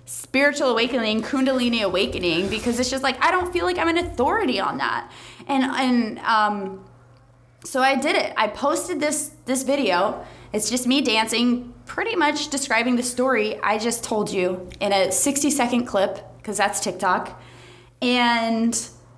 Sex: female